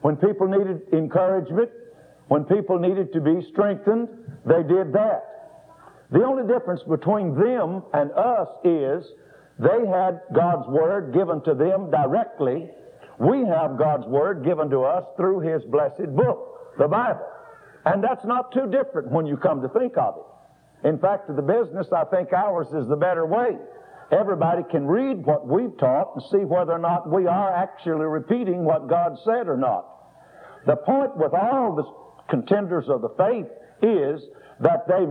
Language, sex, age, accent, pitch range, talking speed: English, male, 60-79, American, 160-215 Hz, 165 wpm